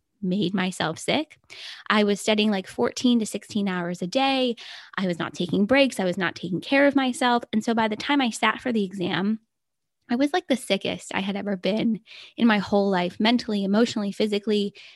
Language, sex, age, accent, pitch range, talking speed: English, female, 10-29, American, 195-250 Hz, 205 wpm